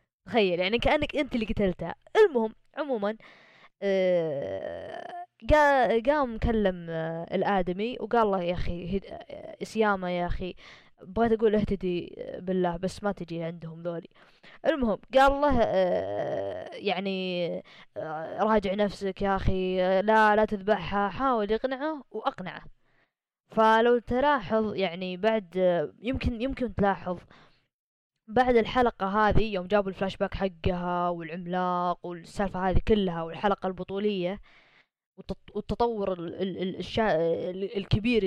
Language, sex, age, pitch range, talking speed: Arabic, female, 20-39, 180-235 Hz, 115 wpm